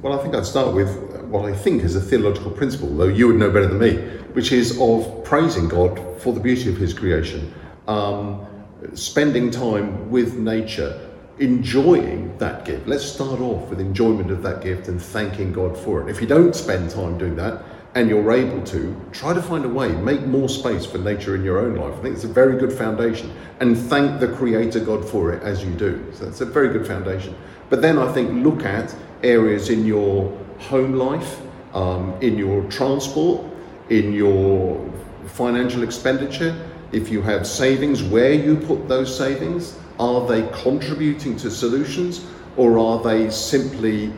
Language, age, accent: English, 50-69, British